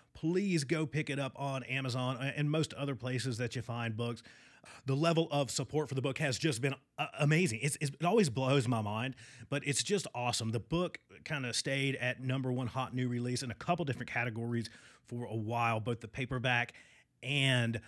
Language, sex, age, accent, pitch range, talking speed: English, male, 30-49, American, 115-140 Hz, 200 wpm